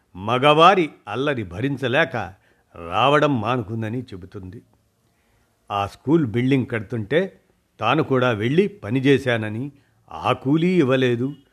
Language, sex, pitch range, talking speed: Telugu, male, 105-140 Hz, 90 wpm